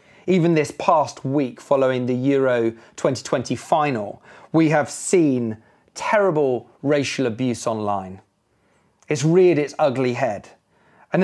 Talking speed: 115 wpm